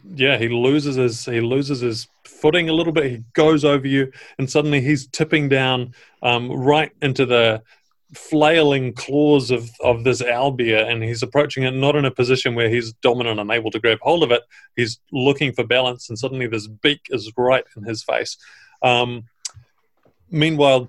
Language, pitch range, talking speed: English, 130-150 Hz, 180 wpm